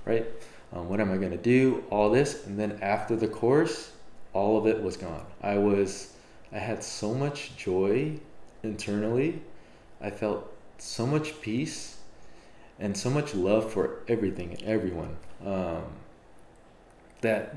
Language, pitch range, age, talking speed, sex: English, 95-115 Hz, 20-39, 145 wpm, male